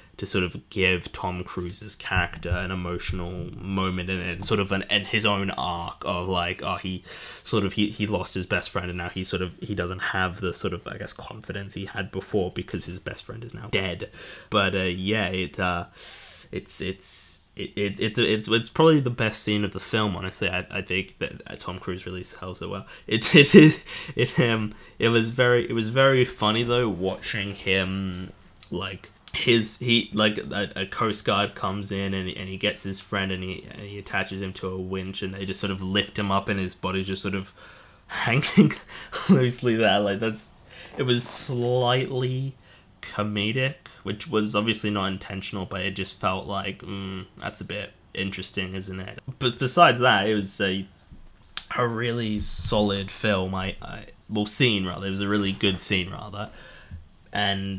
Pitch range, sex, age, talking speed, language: 95-110 Hz, male, 10-29, 195 wpm, English